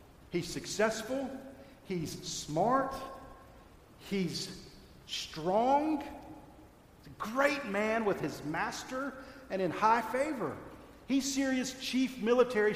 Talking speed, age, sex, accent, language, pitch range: 95 wpm, 50-69, male, American, English, 145-220 Hz